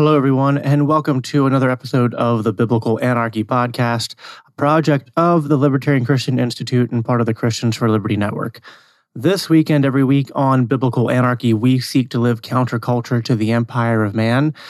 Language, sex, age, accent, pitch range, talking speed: English, male, 30-49, American, 115-140 Hz, 180 wpm